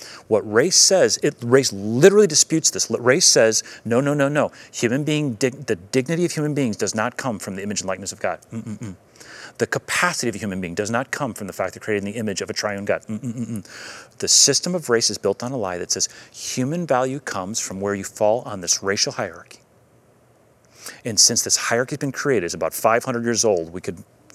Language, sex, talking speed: English, male, 225 wpm